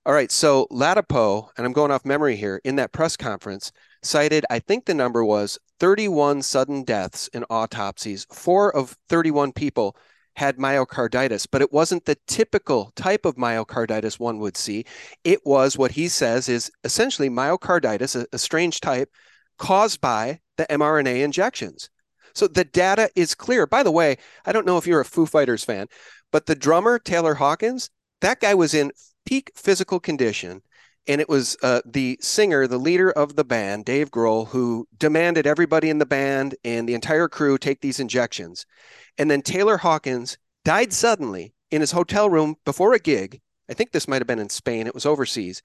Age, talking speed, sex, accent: 40-59, 180 wpm, male, American